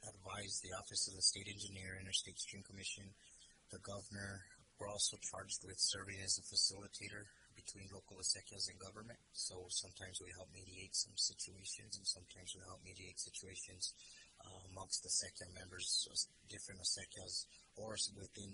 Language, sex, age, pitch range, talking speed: English, male, 30-49, 95-100 Hz, 155 wpm